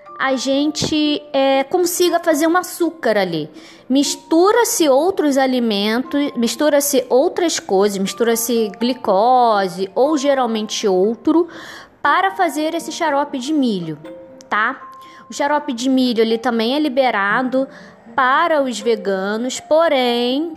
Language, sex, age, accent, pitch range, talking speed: Portuguese, female, 20-39, Brazilian, 215-285 Hz, 110 wpm